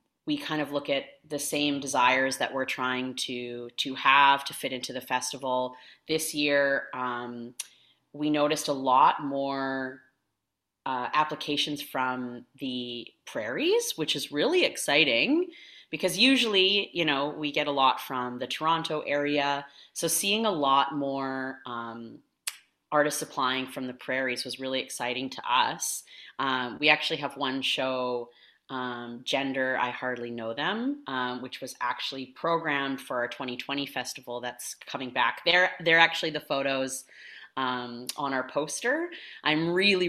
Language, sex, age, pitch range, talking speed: English, female, 30-49, 130-150 Hz, 150 wpm